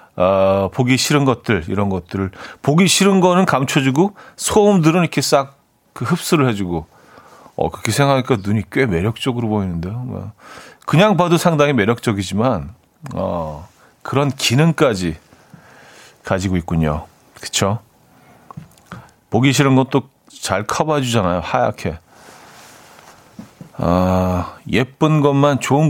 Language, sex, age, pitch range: Korean, male, 40-59, 100-145 Hz